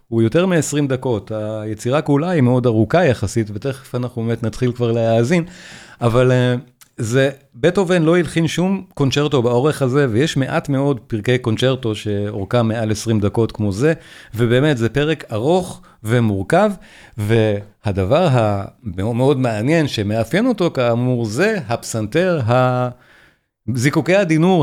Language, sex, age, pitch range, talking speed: Hebrew, male, 40-59, 115-145 Hz, 130 wpm